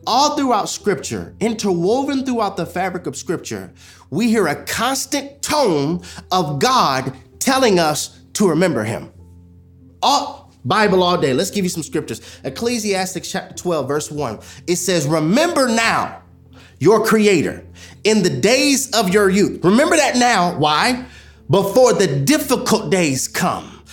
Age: 30-49